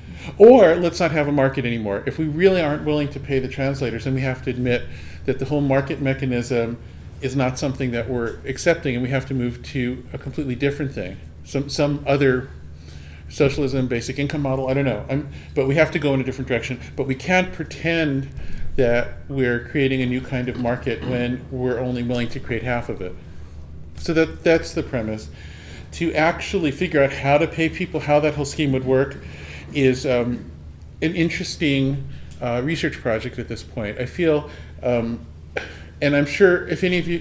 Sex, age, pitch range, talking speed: male, 40-59, 120-145 Hz, 195 wpm